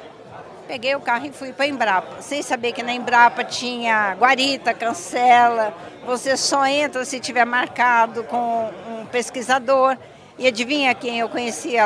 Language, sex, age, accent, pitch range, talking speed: Portuguese, female, 50-69, Brazilian, 230-275 Hz, 150 wpm